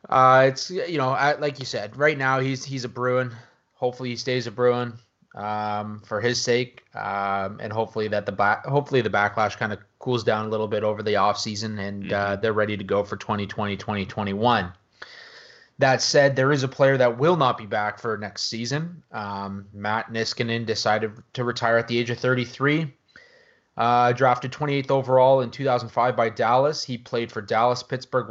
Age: 20-39